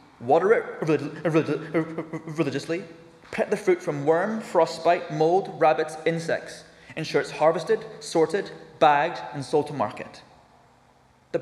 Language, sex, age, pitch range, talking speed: English, male, 20-39, 140-175 Hz, 115 wpm